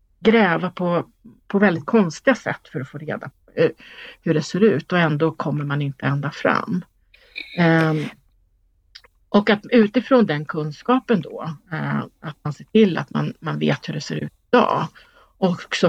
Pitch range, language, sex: 160-240 Hz, Swedish, female